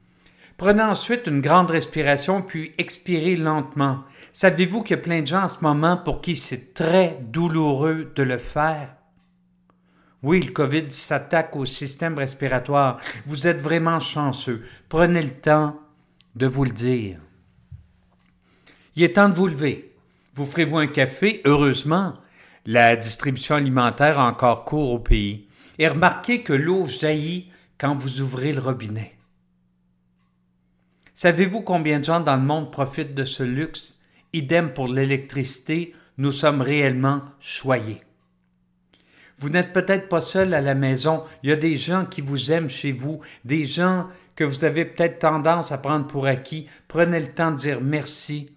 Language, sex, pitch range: French, male, 135-165 Hz